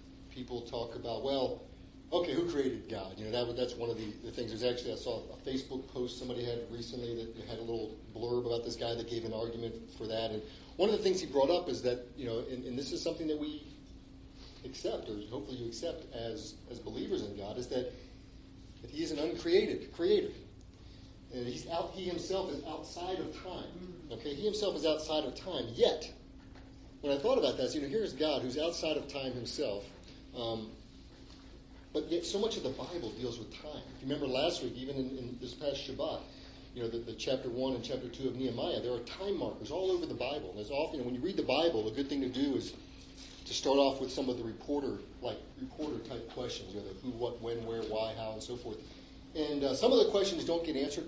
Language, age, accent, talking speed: English, 40-59, American, 235 wpm